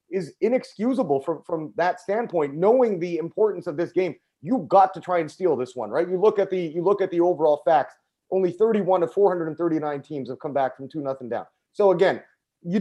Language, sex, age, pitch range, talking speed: English, male, 30-49, 145-185 Hz, 215 wpm